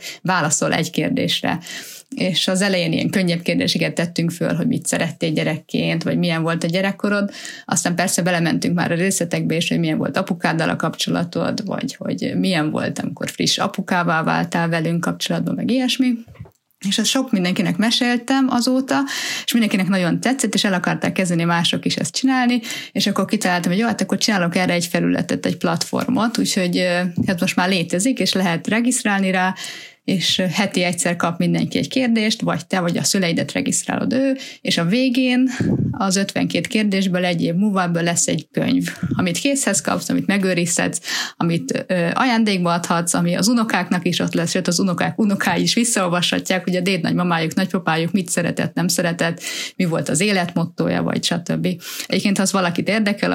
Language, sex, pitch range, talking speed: Hungarian, female, 175-225 Hz, 170 wpm